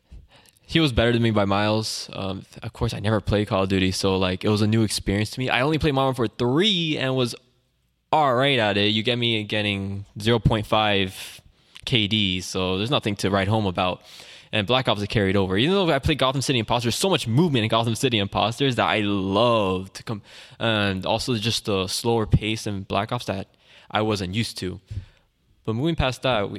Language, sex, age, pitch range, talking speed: English, male, 10-29, 100-130 Hz, 210 wpm